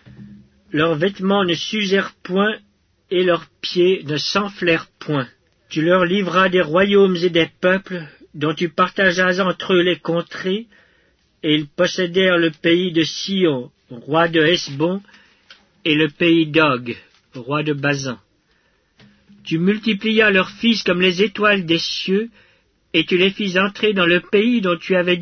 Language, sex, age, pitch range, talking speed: English, male, 50-69, 150-190 Hz, 150 wpm